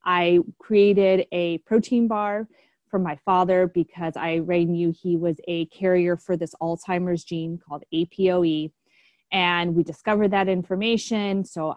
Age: 20-39